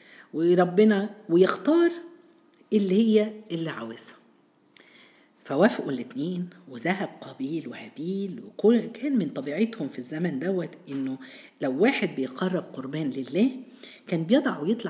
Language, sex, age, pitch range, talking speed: Arabic, female, 50-69, 165-235 Hz, 105 wpm